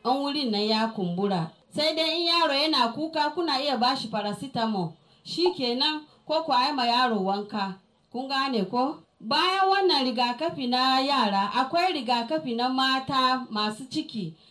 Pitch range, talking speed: 200-270 Hz, 125 wpm